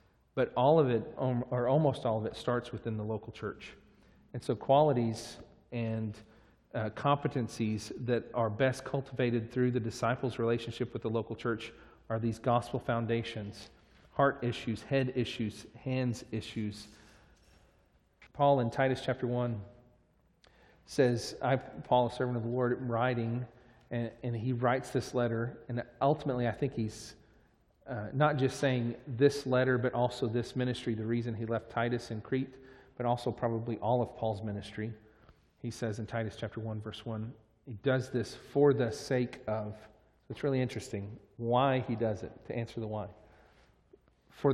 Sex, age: male, 40-59